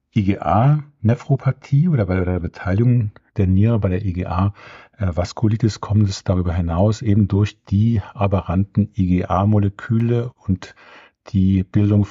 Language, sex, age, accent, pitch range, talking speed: German, male, 50-69, German, 90-110 Hz, 110 wpm